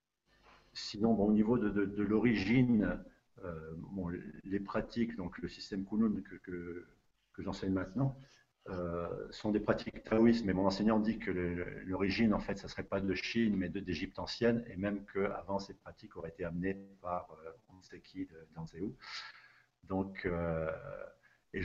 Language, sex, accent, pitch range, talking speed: French, male, French, 90-105 Hz, 175 wpm